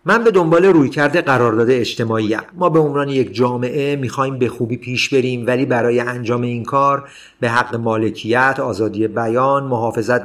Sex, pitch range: male, 120-145 Hz